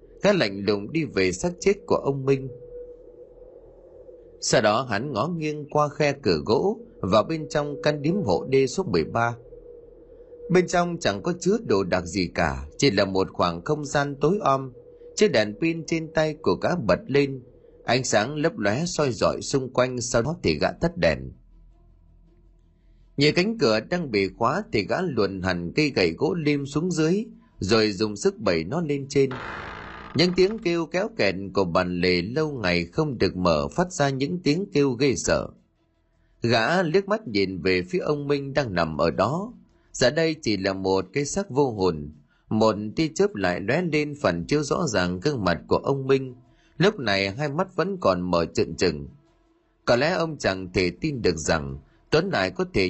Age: 30-49